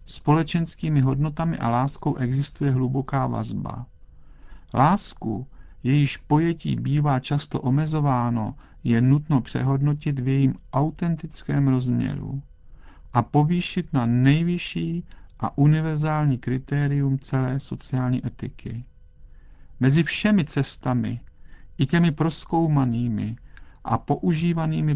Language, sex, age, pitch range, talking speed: Czech, male, 50-69, 120-150 Hz, 90 wpm